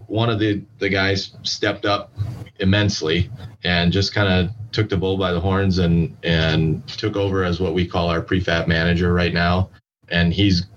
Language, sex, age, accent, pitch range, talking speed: English, male, 30-49, American, 85-105 Hz, 185 wpm